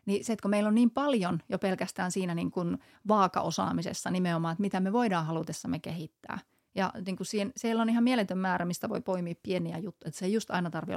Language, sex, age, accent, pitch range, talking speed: Finnish, female, 30-49, native, 180-225 Hz, 215 wpm